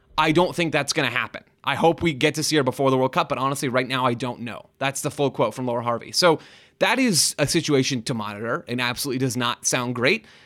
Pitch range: 125-155 Hz